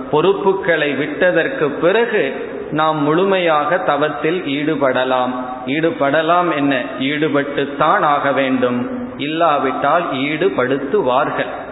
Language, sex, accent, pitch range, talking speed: Tamil, male, native, 135-165 Hz, 70 wpm